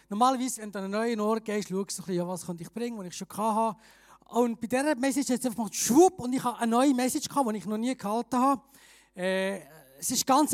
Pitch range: 210-265 Hz